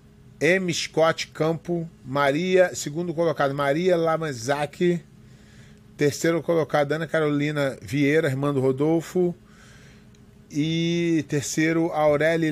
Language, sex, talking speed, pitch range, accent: Portuguese, male, 90 wpm, 135-165 Hz, Brazilian